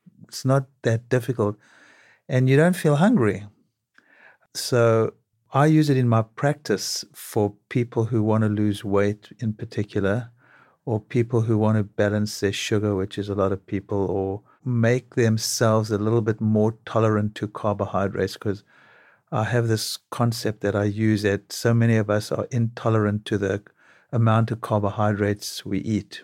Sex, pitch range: male, 105-125 Hz